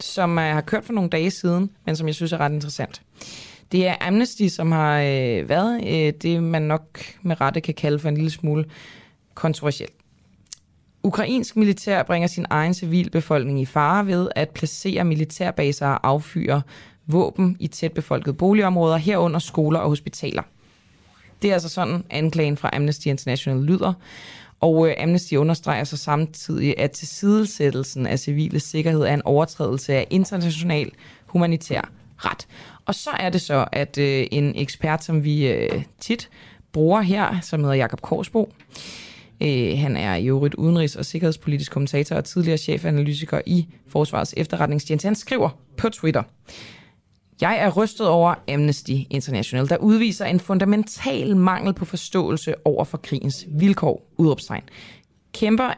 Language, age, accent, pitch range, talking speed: Danish, 20-39, native, 145-180 Hz, 145 wpm